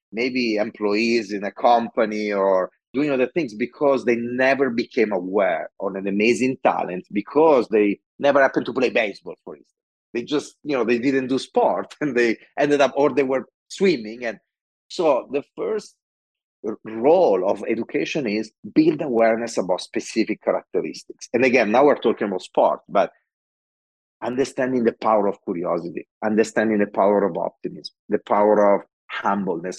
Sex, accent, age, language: male, Italian, 40-59, English